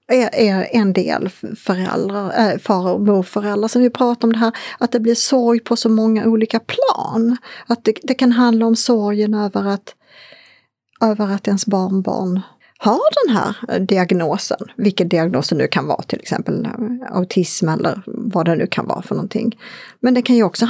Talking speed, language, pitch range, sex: 175 wpm, Swedish, 210-255 Hz, female